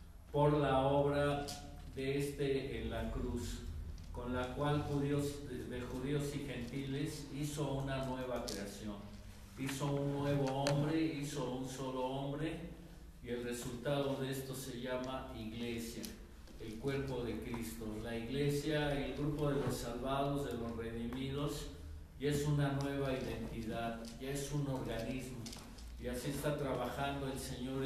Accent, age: Mexican, 50-69